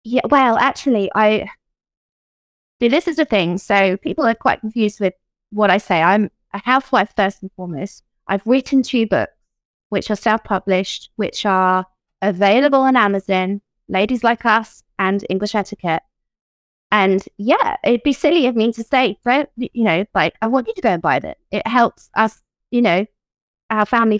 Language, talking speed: English, 175 wpm